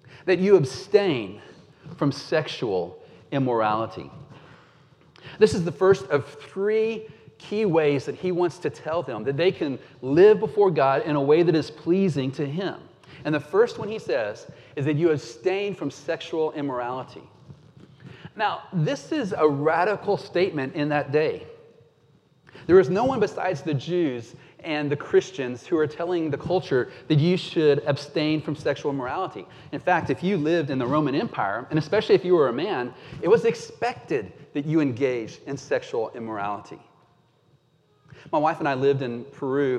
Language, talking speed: English, 165 wpm